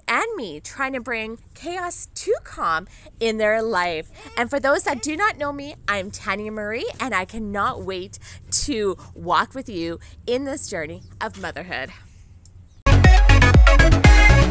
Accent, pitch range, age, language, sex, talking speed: American, 185-240 Hz, 20-39, English, female, 145 wpm